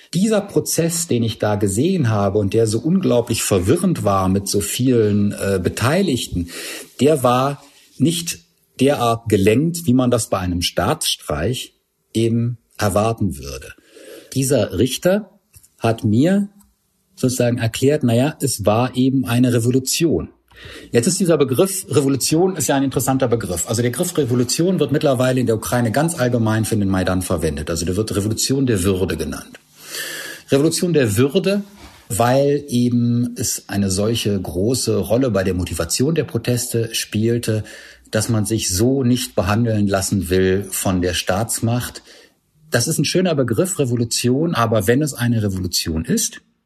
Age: 50-69